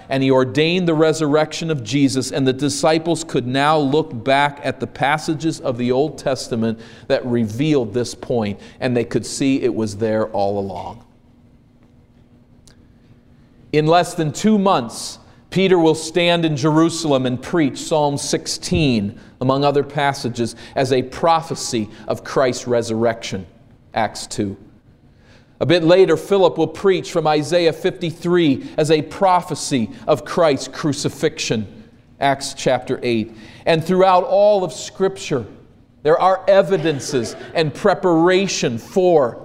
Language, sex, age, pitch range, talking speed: English, male, 40-59, 120-160 Hz, 135 wpm